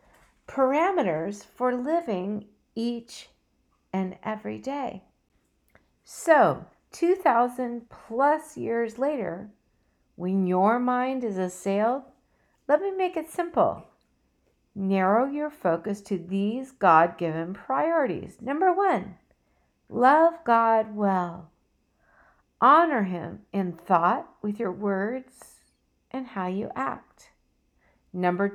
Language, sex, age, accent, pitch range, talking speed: English, female, 50-69, American, 200-295 Hz, 95 wpm